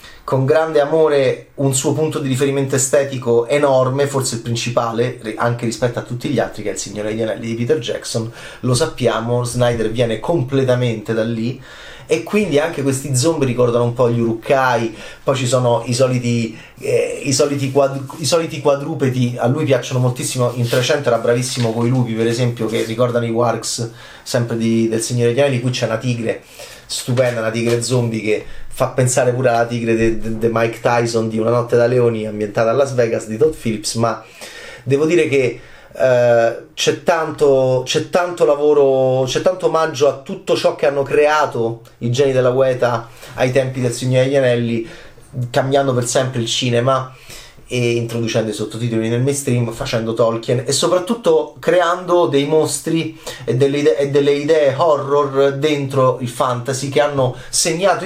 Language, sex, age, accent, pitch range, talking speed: Italian, male, 30-49, native, 115-140 Hz, 175 wpm